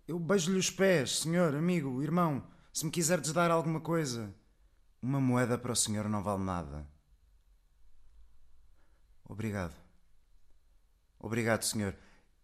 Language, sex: Portuguese, male